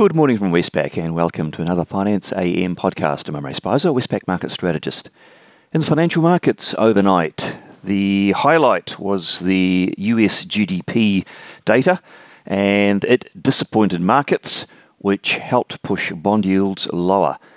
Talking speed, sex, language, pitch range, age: 135 wpm, male, English, 85-105 Hz, 40-59